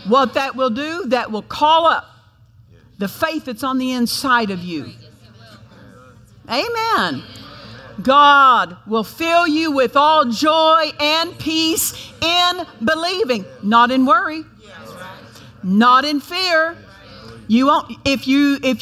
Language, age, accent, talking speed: English, 50-69, American, 125 wpm